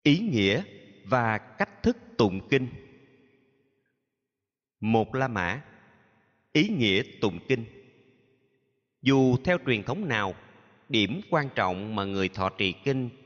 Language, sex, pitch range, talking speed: Vietnamese, male, 100-135 Hz, 120 wpm